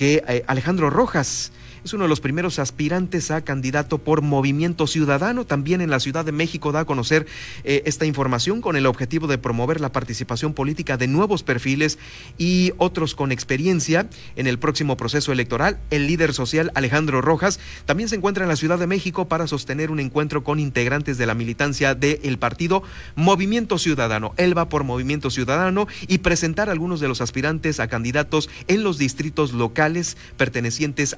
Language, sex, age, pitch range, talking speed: Spanish, male, 40-59, 130-165 Hz, 175 wpm